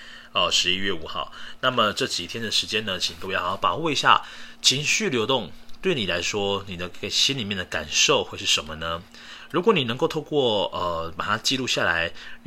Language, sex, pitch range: Chinese, male, 90-115 Hz